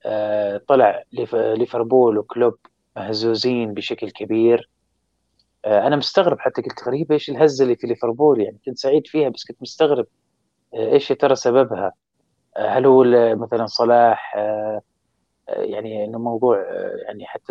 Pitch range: 105-130 Hz